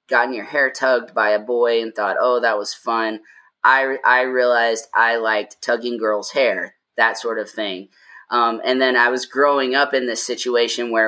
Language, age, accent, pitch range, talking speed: English, 20-39, American, 105-125 Hz, 195 wpm